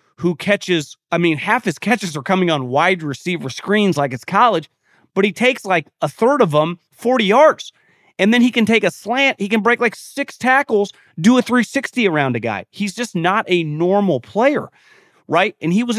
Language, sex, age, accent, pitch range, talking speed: English, male, 30-49, American, 130-205 Hz, 205 wpm